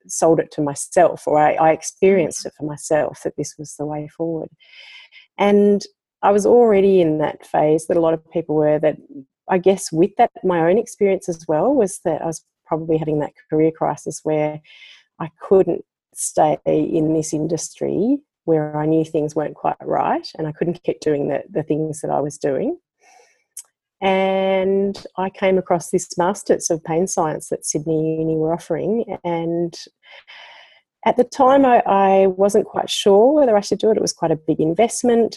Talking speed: 185 wpm